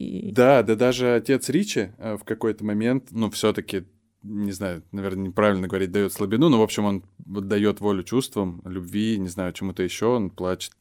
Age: 20-39